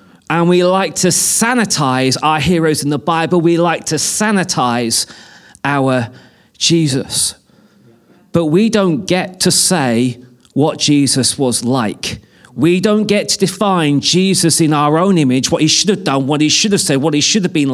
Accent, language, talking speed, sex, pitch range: British, English, 175 wpm, male, 150-210 Hz